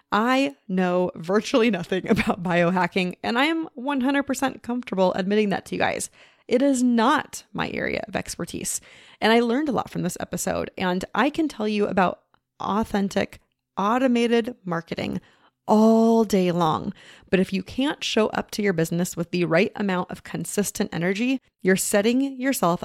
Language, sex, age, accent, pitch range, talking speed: English, female, 30-49, American, 180-235 Hz, 165 wpm